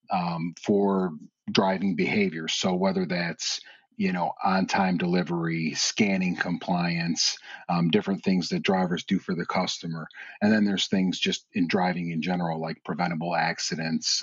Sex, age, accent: male, 40-59, American